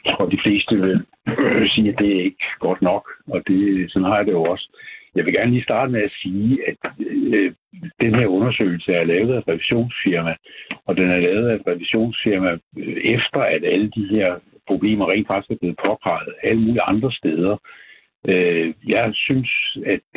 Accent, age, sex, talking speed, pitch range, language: native, 60-79, male, 185 wpm, 95-130 Hz, Danish